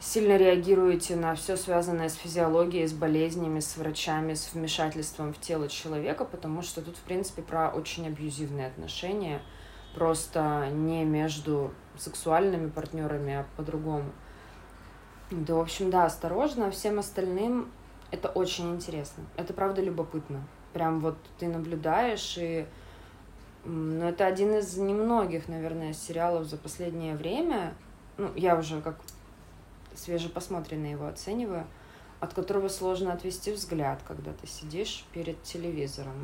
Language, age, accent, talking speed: Russian, 20-39, native, 130 wpm